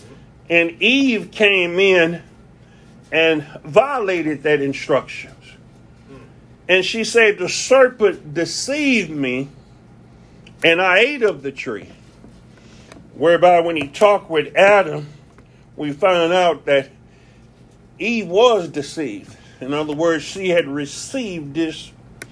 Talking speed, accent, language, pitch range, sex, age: 110 wpm, American, English, 135-175 Hz, male, 50-69